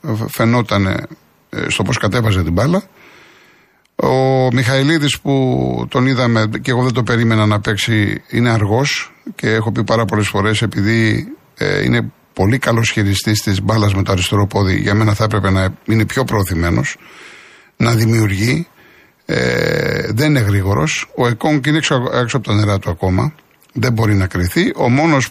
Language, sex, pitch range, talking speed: Greek, male, 105-140 Hz, 160 wpm